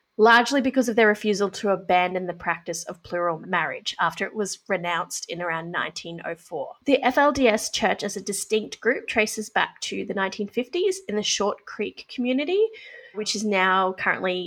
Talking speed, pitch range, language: 165 wpm, 180-230 Hz, English